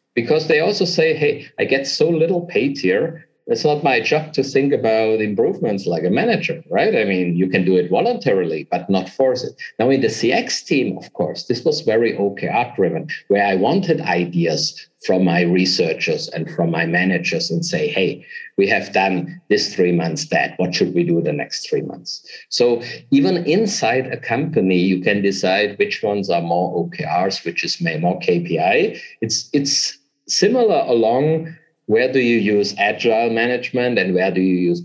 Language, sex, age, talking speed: English, male, 50-69, 185 wpm